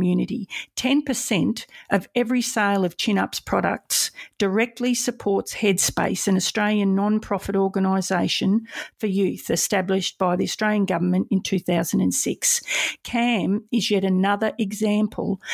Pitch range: 195-230 Hz